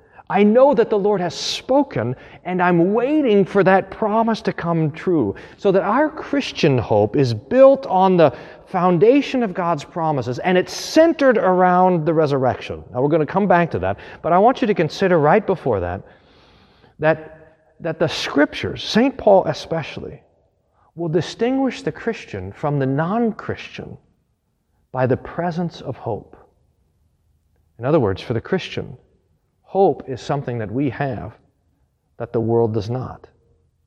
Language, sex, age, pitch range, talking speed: English, male, 40-59, 115-180 Hz, 155 wpm